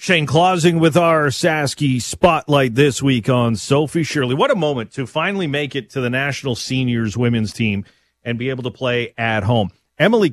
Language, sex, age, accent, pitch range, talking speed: English, male, 40-59, American, 105-135 Hz, 185 wpm